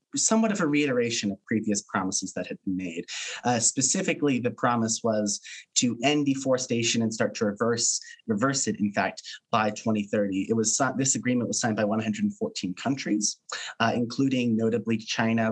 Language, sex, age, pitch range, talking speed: English, male, 30-49, 105-125 Hz, 180 wpm